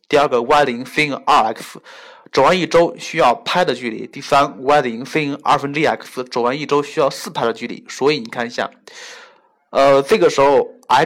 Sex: male